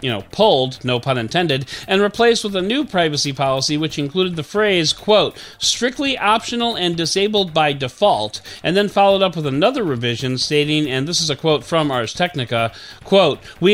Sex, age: male, 40-59